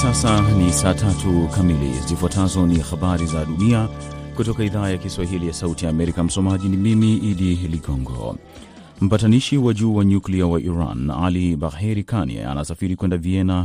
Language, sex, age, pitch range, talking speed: Swahili, male, 30-49, 80-95 Hz, 150 wpm